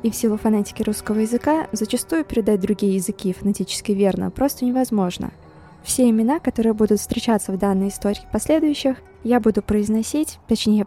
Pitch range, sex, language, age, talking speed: 205-245 Hz, female, Russian, 20-39, 150 wpm